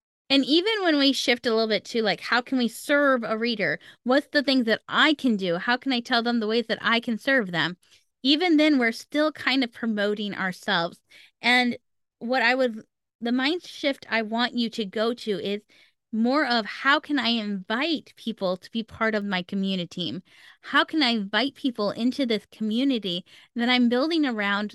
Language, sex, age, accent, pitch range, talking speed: English, female, 10-29, American, 210-270 Hz, 200 wpm